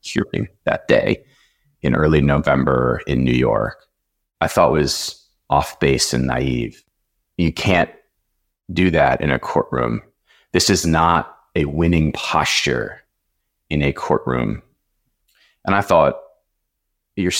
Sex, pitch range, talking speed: male, 75-100 Hz, 125 wpm